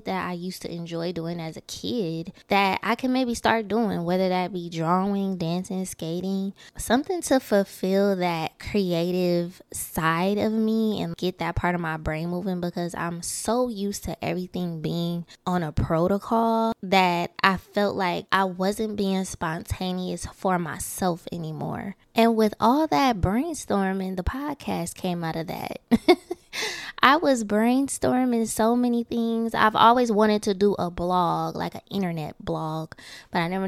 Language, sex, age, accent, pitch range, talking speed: English, female, 20-39, American, 170-215 Hz, 160 wpm